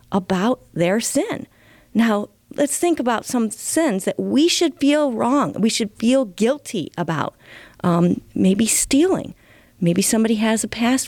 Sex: female